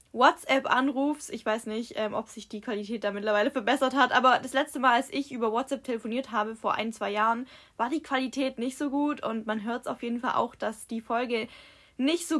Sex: female